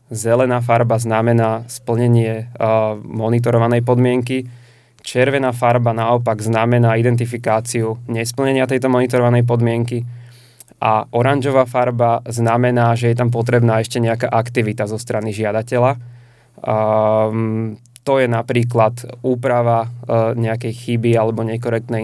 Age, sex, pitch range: 20-39, male, 115-120 Hz